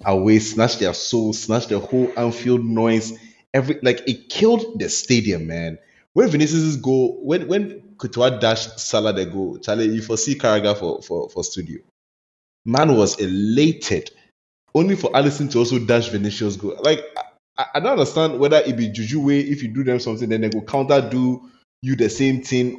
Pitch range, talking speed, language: 110-140 Hz, 175 wpm, English